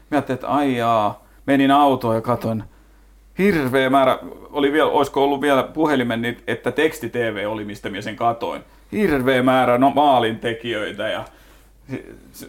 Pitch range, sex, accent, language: 110-135 Hz, male, native, Finnish